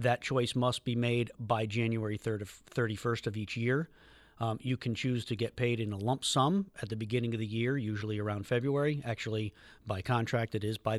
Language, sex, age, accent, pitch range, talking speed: English, male, 40-59, American, 110-135 Hz, 215 wpm